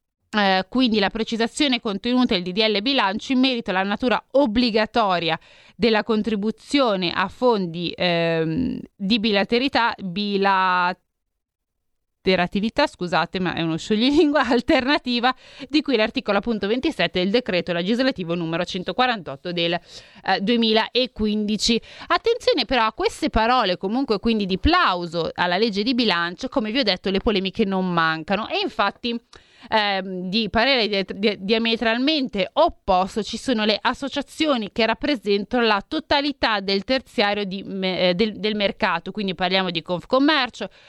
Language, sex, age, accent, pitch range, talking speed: Italian, female, 30-49, native, 185-250 Hz, 125 wpm